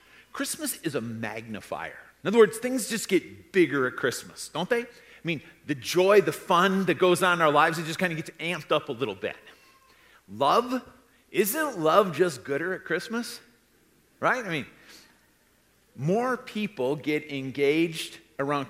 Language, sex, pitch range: English, male, 130-180 Hz